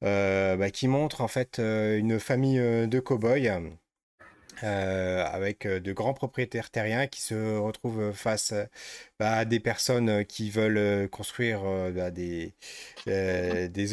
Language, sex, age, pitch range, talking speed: French, male, 30-49, 105-130 Hz, 145 wpm